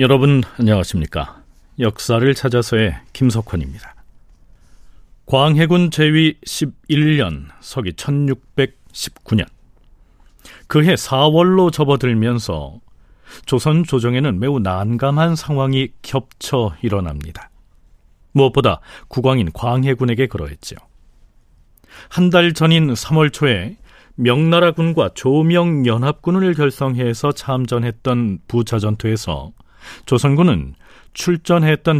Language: Korean